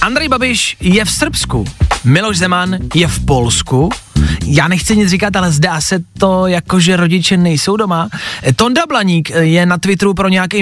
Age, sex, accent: 20-39, male, native